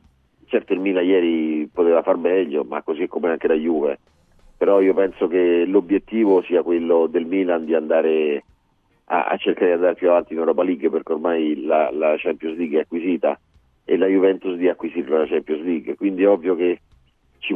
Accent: native